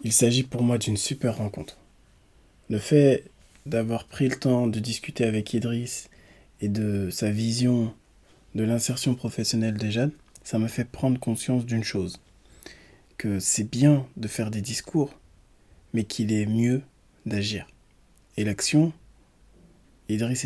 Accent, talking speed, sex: French, 140 wpm, male